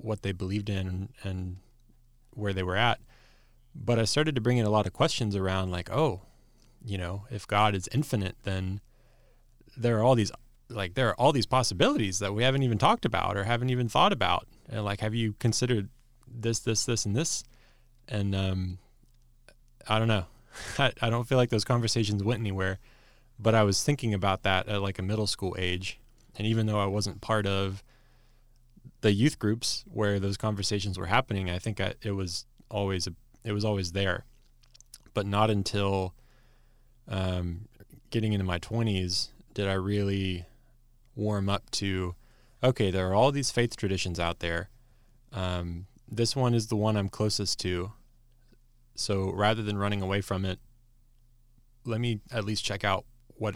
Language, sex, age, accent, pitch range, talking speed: English, male, 20-39, American, 95-120 Hz, 175 wpm